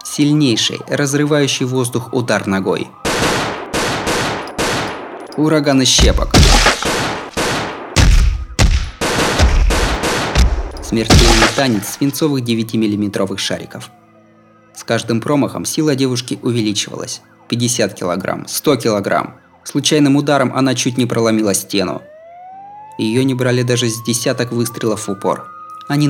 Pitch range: 100-140 Hz